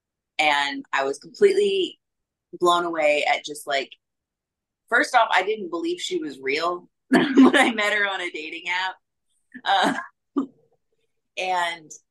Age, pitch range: 30-49, 140-200 Hz